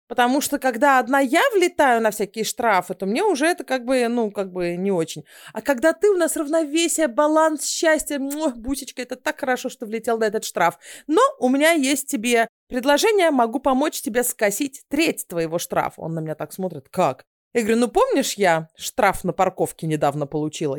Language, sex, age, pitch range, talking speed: Russian, female, 30-49, 200-285 Hz, 190 wpm